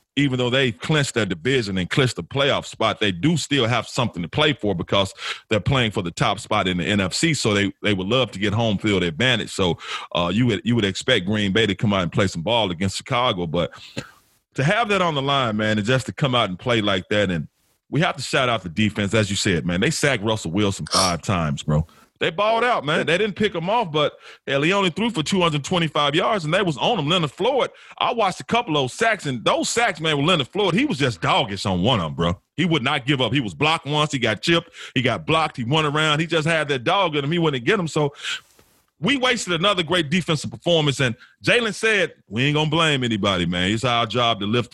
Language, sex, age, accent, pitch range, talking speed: English, male, 30-49, American, 105-160 Hz, 255 wpm